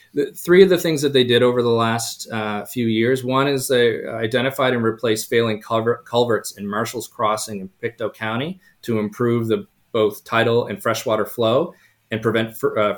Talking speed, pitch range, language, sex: 185 wpm, 110-125 Hz, English, male